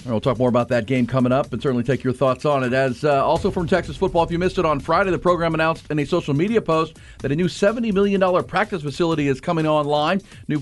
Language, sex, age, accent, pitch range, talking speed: English, male, 40-59, American, 140-180 Hz, 260 wpm